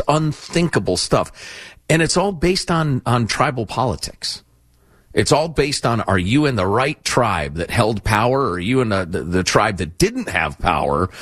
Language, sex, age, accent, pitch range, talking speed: English, male, 40-59, American, 95-155 Hz, 185 wpm